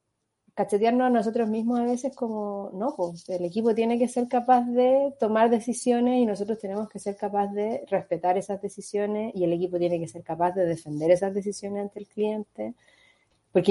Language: Spanish